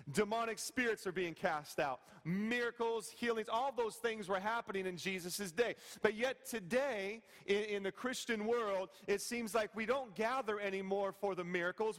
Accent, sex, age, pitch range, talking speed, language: American, male, 40-59, 190-230 Hz, 170 wpm, English